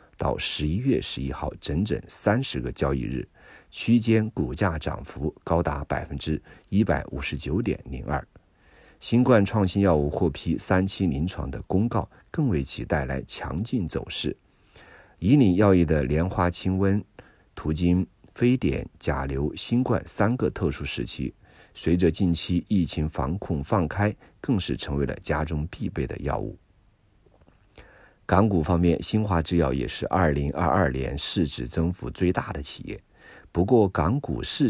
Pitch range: 75-100 Hz